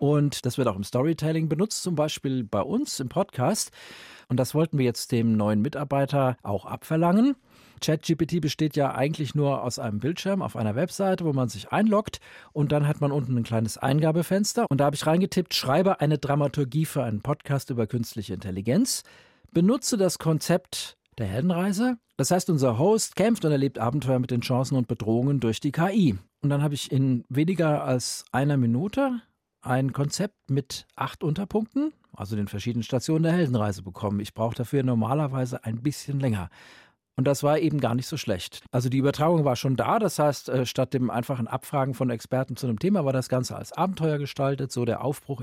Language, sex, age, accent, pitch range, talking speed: German, male, 40-59, German, 125-160 Hz, 190 wpm